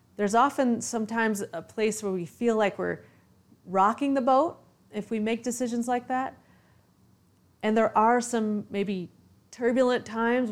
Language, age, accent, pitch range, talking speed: English, 30-49, American, 180-240 Hz, 150 wpm